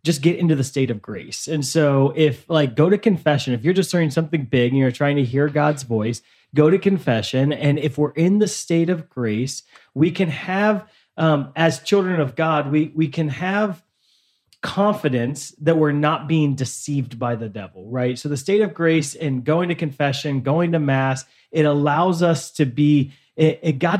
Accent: American